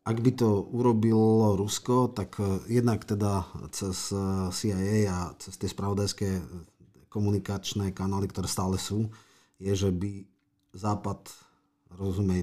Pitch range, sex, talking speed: 95-105 Hz, male, 115 wpm